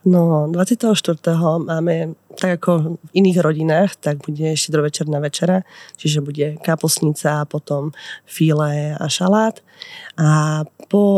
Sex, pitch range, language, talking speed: female, 155-175 Hz, Slovak, 120 wpm